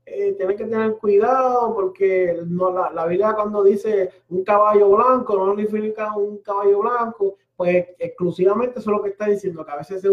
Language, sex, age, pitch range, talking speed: Spanish, male, 30-49, 185-260 Hz, 185 wpm